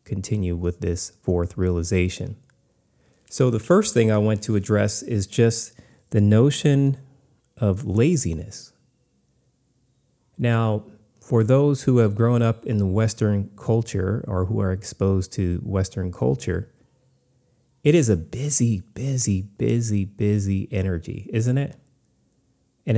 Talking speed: 125 wpm